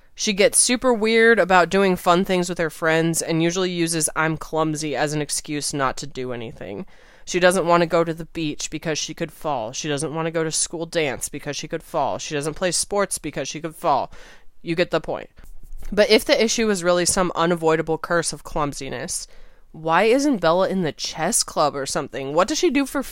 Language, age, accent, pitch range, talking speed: English, 20-39, American, 145-185 Hz, 220 wpm